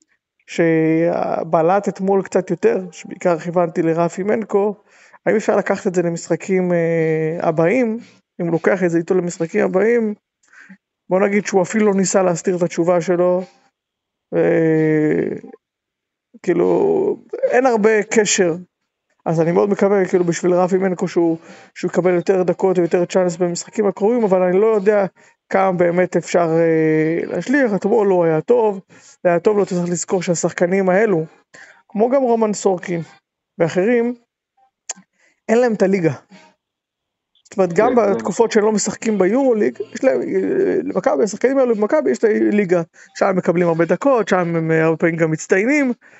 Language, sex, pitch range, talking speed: Hebrew, male, 175-220 Hz, 145 wpm